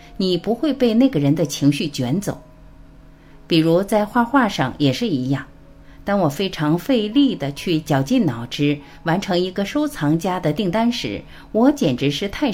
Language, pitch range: Chinese, 145-220 Hz